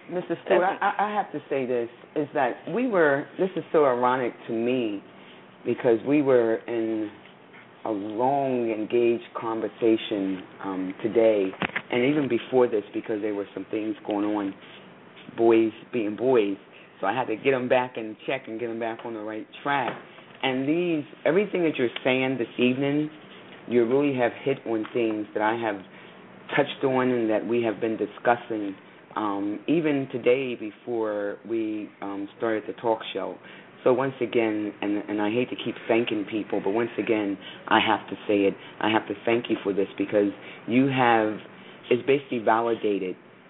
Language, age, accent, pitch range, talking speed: English, 30-49, American, 105-125 Hz, 175 wpm